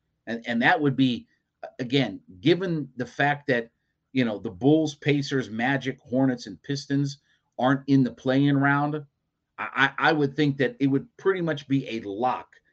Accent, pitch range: American, 120-155 Hz